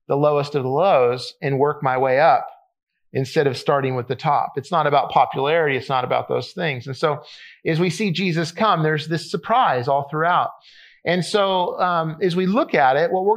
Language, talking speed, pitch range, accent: English, 210 wpm, 140-185 Hz, American